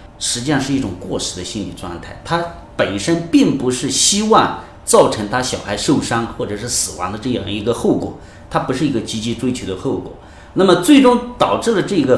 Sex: male